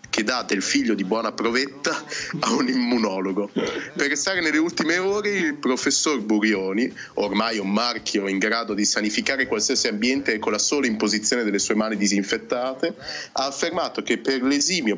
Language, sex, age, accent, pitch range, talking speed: Italian, male, 30-49, native, 105-140 Hz, 160 wpm